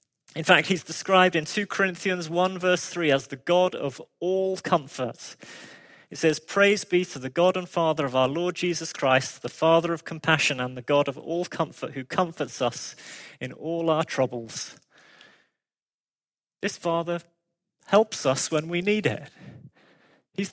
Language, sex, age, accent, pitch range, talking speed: English, male, 30-49, British, 140-175 Hz, 165 wpm